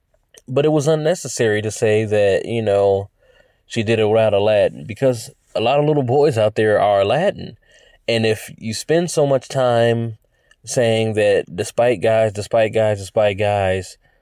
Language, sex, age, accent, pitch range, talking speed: English, male, 20-39, American, 105-125 Hz, 165 wpm